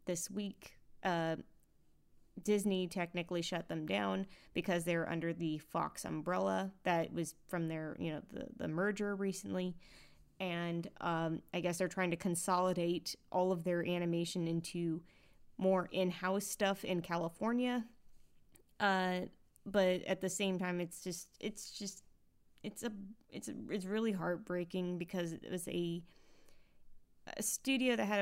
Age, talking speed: 20-39, 140 wpm